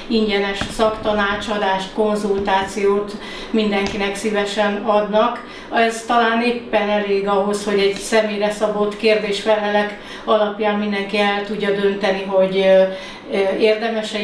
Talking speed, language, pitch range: 95 wpm, Hungarian, 200-215 Hz